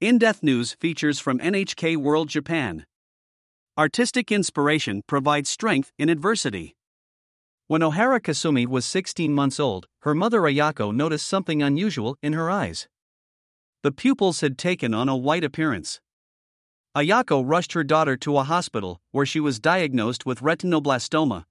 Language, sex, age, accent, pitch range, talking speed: English, male, 50-69, American, 130-170 Hz, 140 wpm